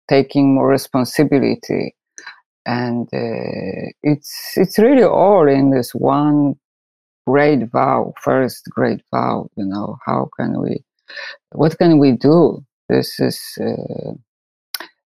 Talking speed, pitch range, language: 110 wpm, 135-155 Hz, English